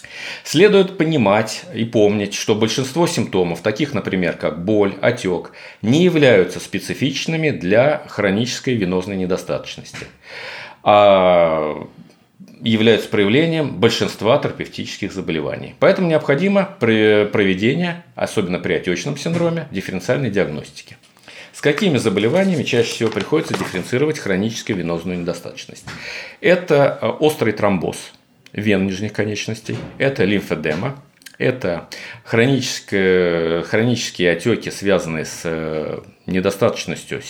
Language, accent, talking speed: Russian, native, 95 wpm